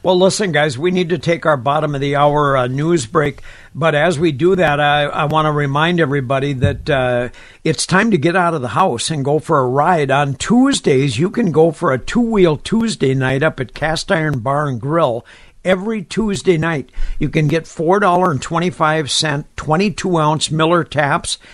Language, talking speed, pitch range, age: English, 175 wpm, 150-185 Hz, 60-79